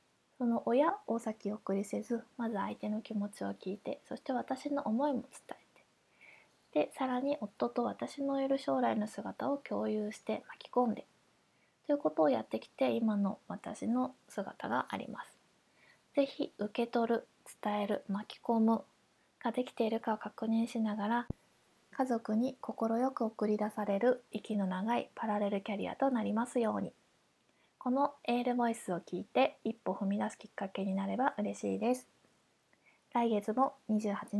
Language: Japanese